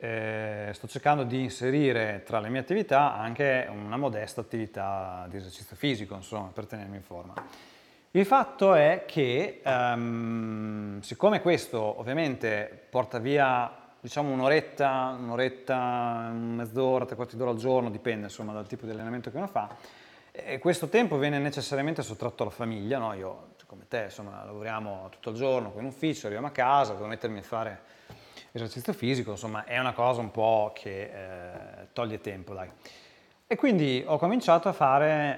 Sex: male